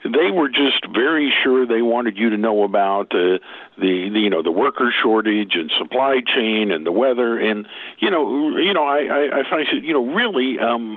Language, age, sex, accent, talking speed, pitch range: English, 50-69, male, American, 210 wpm, 105-140 Hz